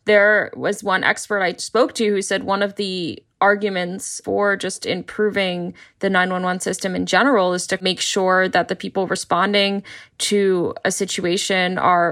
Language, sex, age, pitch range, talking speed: English, female, 10-29, 180-200 Hz, 165 wpm